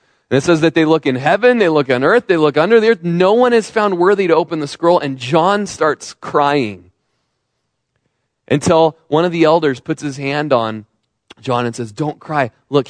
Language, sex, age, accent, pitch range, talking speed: English, male, 20-39, American, 120-160 Hz, 210 wpm